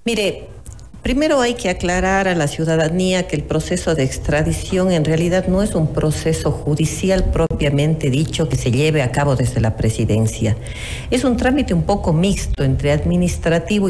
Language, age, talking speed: Spanish, 40-59, 165 wpm